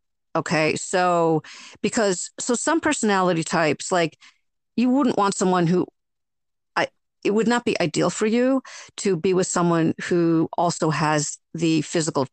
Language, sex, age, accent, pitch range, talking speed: English, female, 50-69, American, 160-215 Hz, 145 wpm